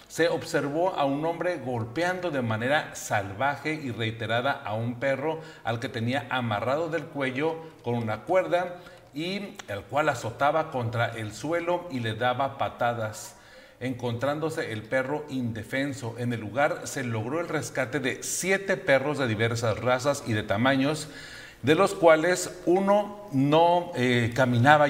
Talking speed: 145 wpm